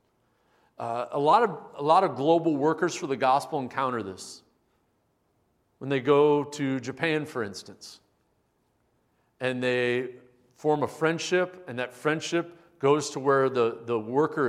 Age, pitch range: 40-59, 115-150 Hz